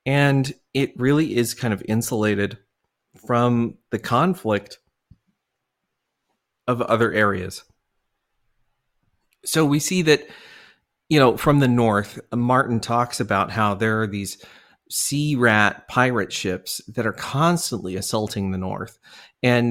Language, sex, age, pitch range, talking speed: English, male, 30-49, 105-130 Hz, 120 wpm